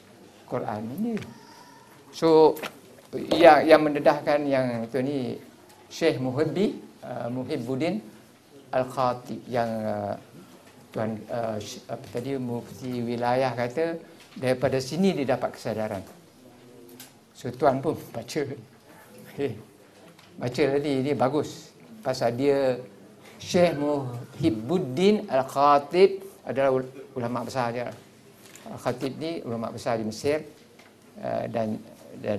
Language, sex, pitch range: Malay, male, 115-160 Hz